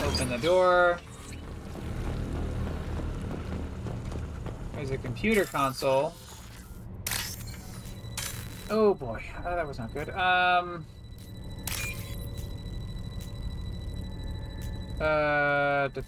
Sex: male